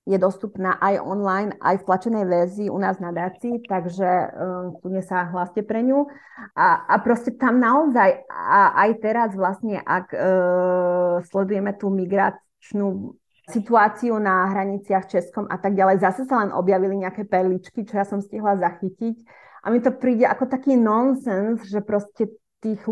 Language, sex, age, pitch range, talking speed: Slovak, female, 30-49, 185-220 Hz, 160 wpm